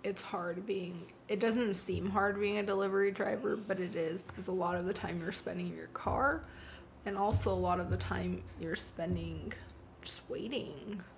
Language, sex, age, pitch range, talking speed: English, female, 20-39, 175-200 Hz, 195 wpm